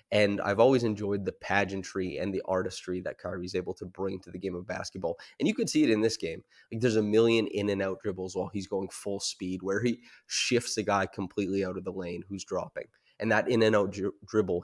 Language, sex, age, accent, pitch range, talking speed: English, male, 20-39, American, 95-110 Hz, 240 wpm